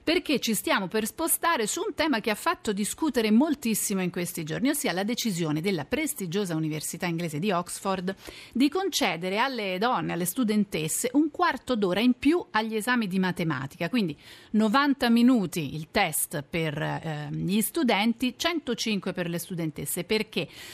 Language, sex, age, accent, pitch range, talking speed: Italian, female, 40-59, native, 180-245 Hz, 155 wpm